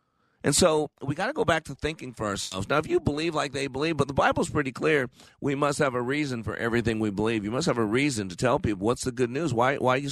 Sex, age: male, 50-69